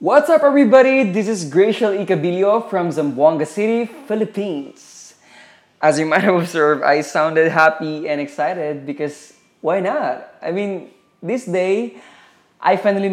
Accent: Filipino